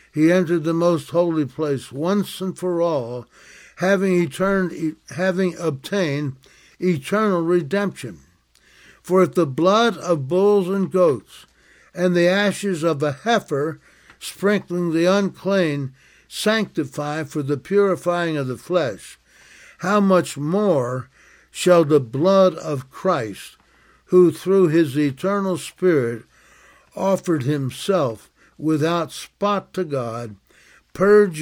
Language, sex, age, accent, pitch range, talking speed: English, male, 60-79, American, 140-185 Hz, 115 wpm